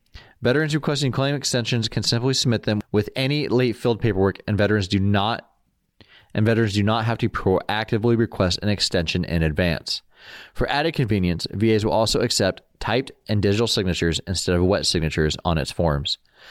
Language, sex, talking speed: English, male, 155 wpm